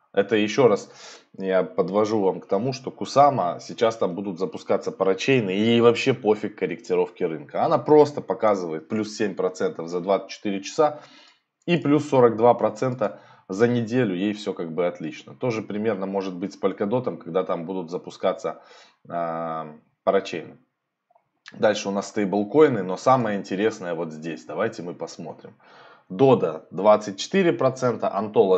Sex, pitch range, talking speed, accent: male, 100-130 Hz, 135 wpm, native